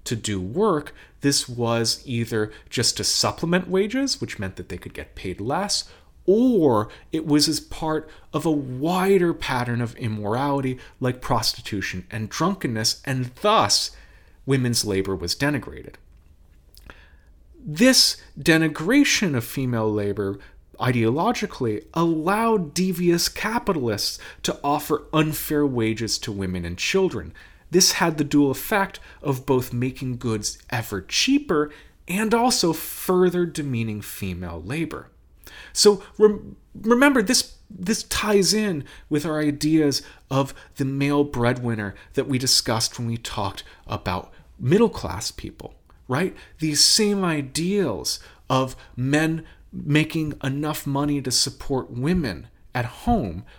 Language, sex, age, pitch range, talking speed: English, male, 30-49, 115-170 Hz, 120 wpm